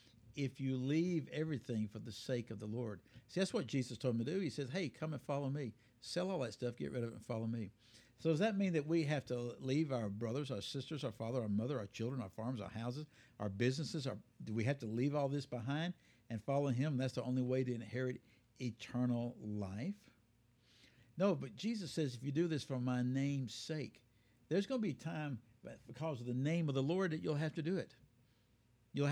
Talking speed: 230 wpm